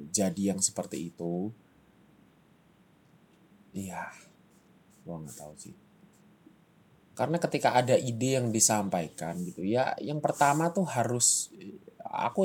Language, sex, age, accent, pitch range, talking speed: Indonesian, male, 20-39, native, 95-125 Hz, 105 wpm